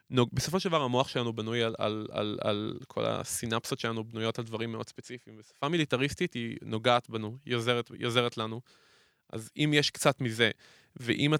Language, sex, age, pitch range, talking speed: Hebrew, male, 20-39, 115-135 Hz, 165 wpm